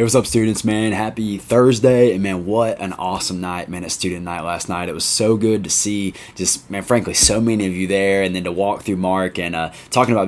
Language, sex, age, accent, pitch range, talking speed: English, male, 20-39, American, 90-110 Hz, 245 wpm